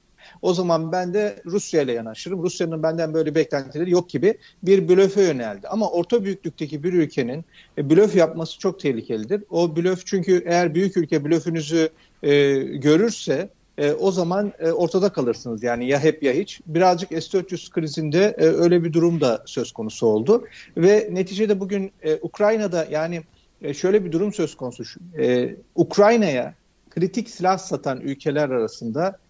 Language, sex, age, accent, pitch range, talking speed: Turkish, male, 50-69, native, 155-205 Hz, 135 wpm